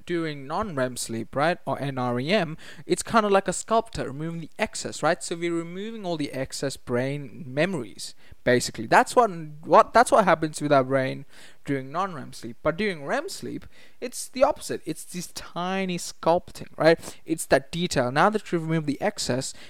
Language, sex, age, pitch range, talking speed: English, male, 20-39, 135-175 Hz, 175 wpm